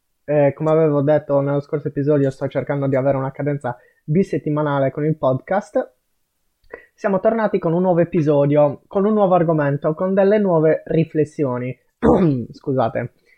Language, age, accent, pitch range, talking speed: Italian, 20-39, native, 145-180 Hz, 145 wpm